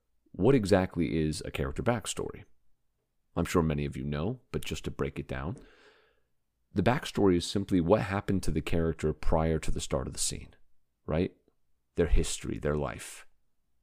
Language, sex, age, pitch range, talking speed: English, male, 30-49, 75-95 Hz, 170 wpm